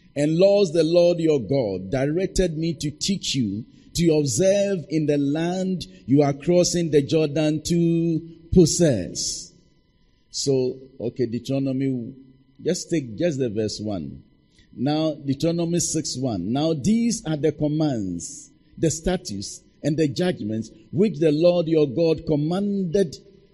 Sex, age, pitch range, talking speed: male, 50-69, 125-165 Hz, 135 wpm